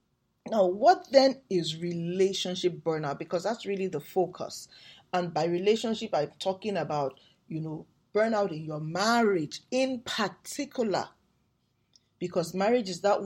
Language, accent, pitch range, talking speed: English, Nigerian, 170-230 Hz, 130 wpm